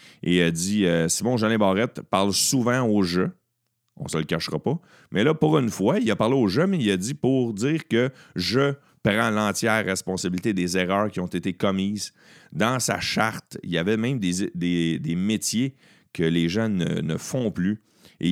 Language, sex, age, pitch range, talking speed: French, male, 40-59, 90-115 Hz, 205 wpm